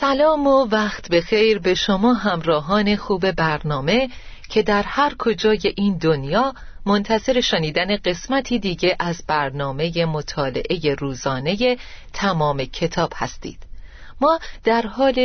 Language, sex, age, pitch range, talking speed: Persian, female, 40-59, 155-240 Hz, 120 wpm